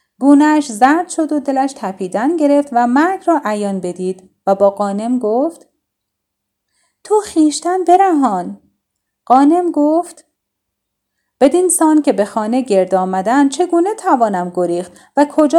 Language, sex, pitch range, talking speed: Persian, female, 230-335 Hz, 125 wpm